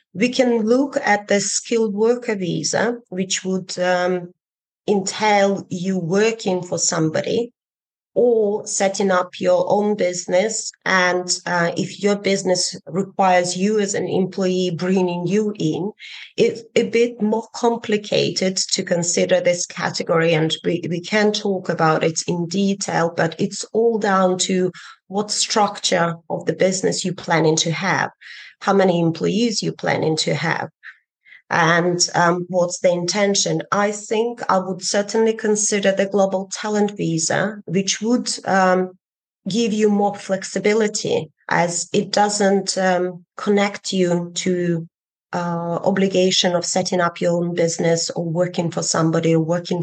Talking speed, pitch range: 140 wpm, 170-205 Hz